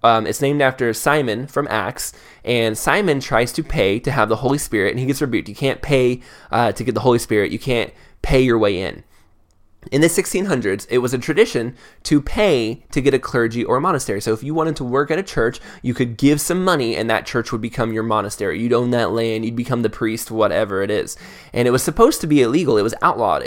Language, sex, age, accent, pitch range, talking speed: English, male, 20-39, American, 110-135 Hz, 240 wpm